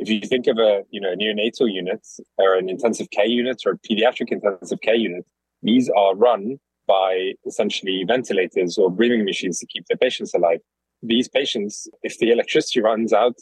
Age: 20-39